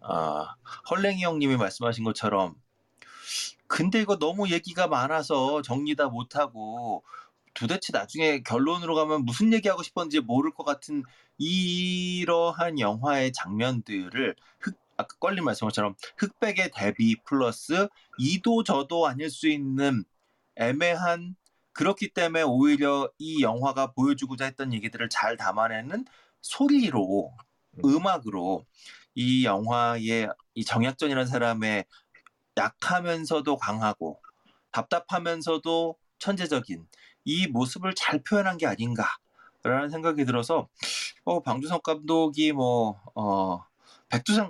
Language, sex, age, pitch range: Korean, male, 30-49, 125-185 Hz